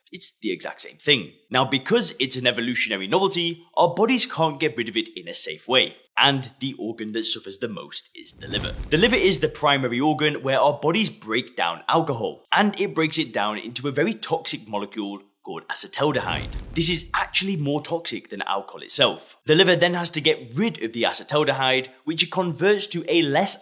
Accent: British